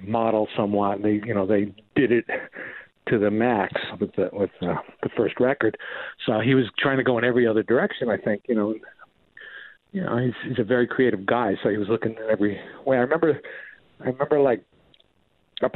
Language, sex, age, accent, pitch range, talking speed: English, male, 50-69, American, 110-140 Hz, 195 wpm